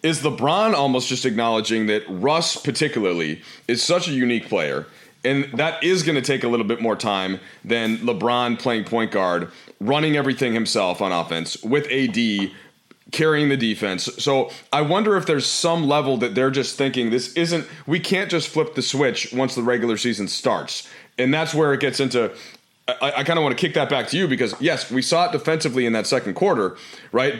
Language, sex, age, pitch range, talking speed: English, male, 30-49, 115-155 Hz, 200 wpm